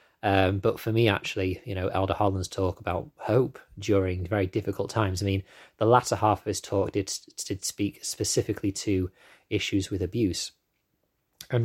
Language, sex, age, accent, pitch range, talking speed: English, male, 20-39, British, 95-105 Hz, 170 wpm